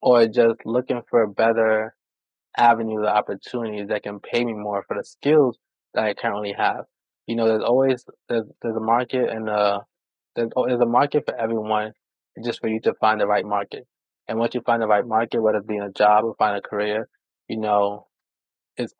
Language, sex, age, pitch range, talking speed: English, male, 20-39, 105-120 Hz, 205 wpm